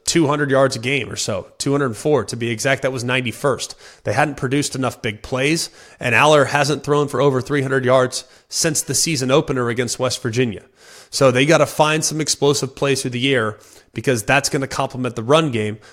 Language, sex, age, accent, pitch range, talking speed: English, male, 30-49, American, 125-145 Hz, 200 wpm